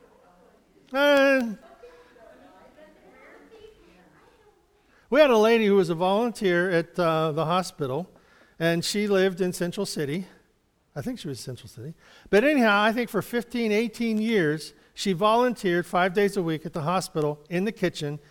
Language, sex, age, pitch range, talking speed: English, male, 50-69, 160-235 Hz, 150 wpm